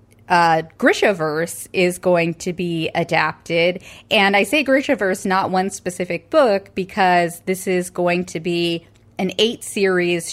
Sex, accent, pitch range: female, American, 160-195 Hz